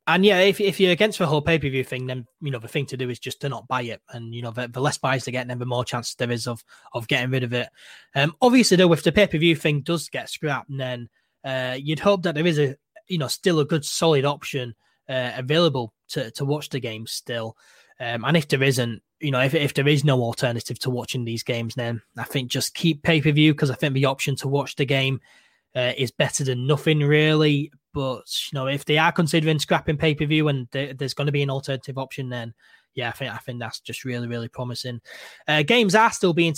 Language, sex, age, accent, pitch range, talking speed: English, male, 20-39, British, 125-160 Hz, 240 wpm